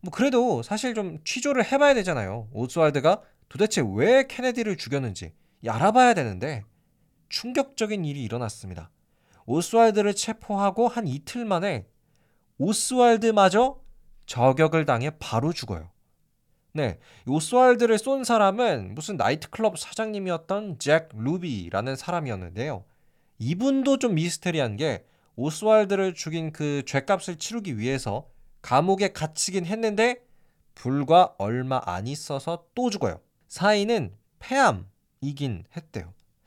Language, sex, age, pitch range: Korean, male, 20-39, 130-220 Hz